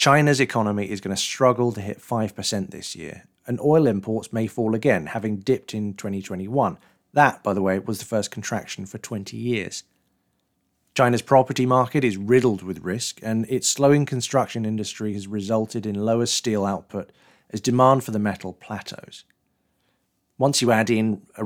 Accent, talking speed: British, 170 wpm